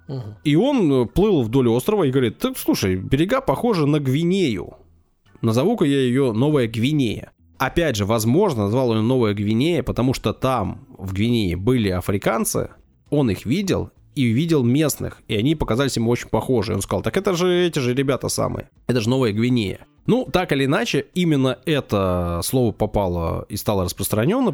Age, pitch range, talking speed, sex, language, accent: 20-39, 100-130 Hz, 170 wpm, male, Russian, native